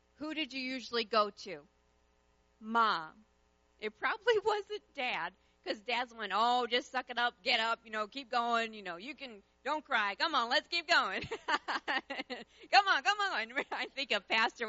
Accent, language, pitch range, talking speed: American, English, 215-275 Hz, 185 wpm